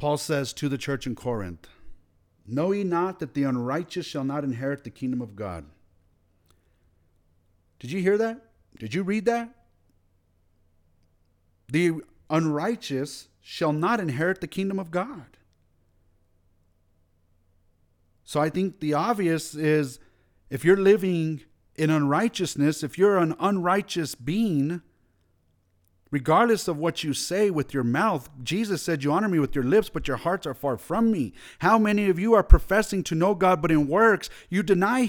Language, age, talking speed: English, 40-59, 155 wpm